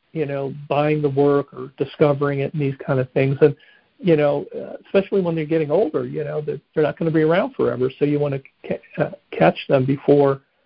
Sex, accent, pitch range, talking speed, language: male, American, 140-160 Hz, 210 wpm, English